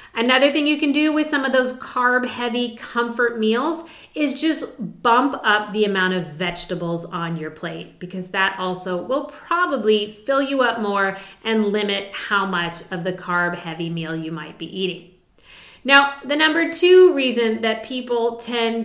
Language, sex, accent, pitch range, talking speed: English, female, American, 195-265 Hz, 170 wpm